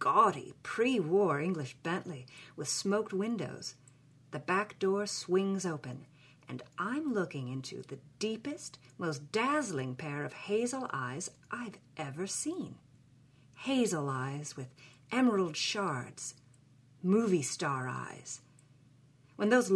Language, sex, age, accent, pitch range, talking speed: English, female, 40-59, American, 135-200 Hz, 110 wpm